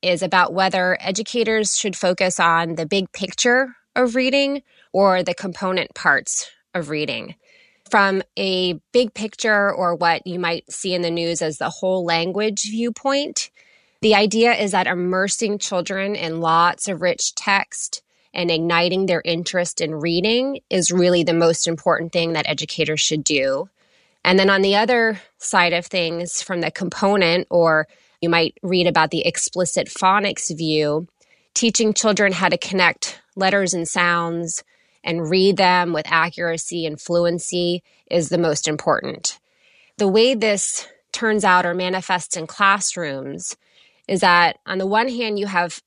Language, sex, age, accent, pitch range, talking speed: English, female, 20-39, American, 170-210 Hz, 155 wpm